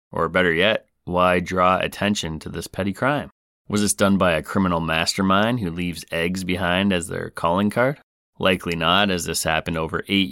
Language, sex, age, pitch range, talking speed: English, male, 30-49, 85-105 Hz, 185 wpm